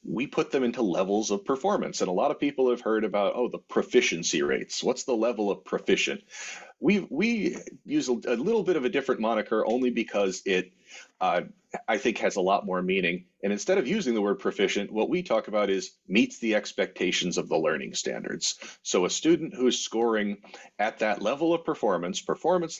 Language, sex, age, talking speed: English, male, 40-59, 205 wpm